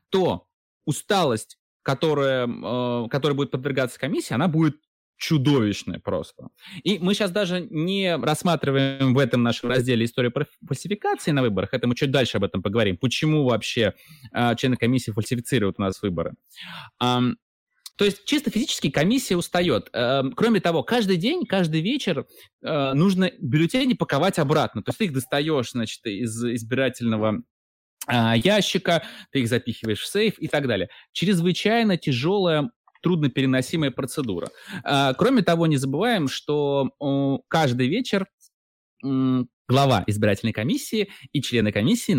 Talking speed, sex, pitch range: 130 wpm, male, 120-175 Hz